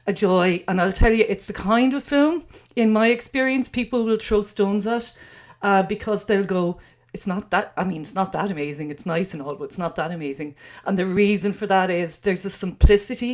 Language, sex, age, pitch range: English, female, 40-59, 175-215 Hz